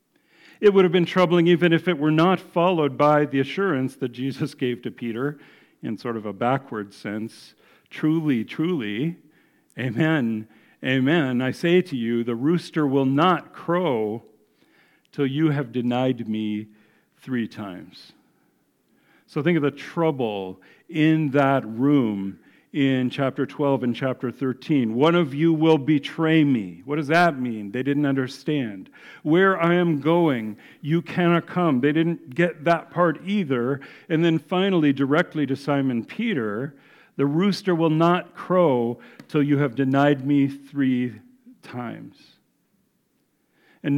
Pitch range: 130-165 Hz